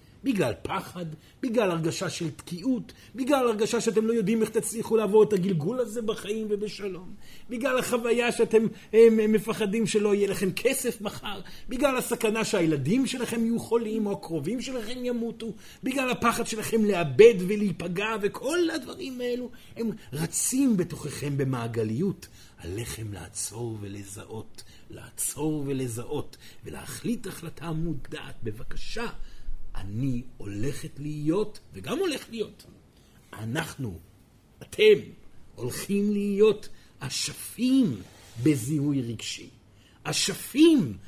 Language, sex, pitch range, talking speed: Hebrew, male, 150-235 Hz, 110 wpm